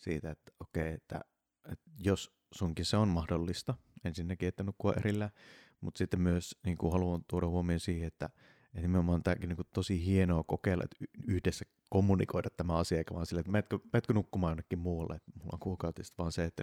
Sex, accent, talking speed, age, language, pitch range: male, native, 195 wpm, 30-49, Finnish, 85-95 Hz